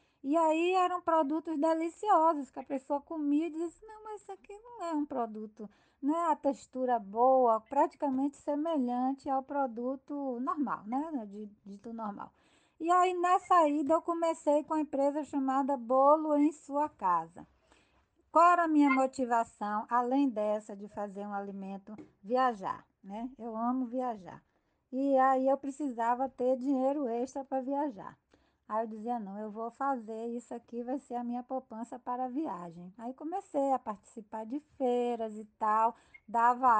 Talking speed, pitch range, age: 155 wpm, 225-285 Hz, 20-39